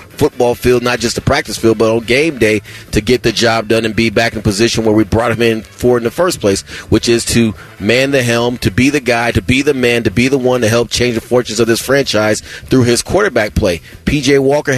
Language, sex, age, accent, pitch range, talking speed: English, male, 30-49, American, 110-130 Hz, 255 wpm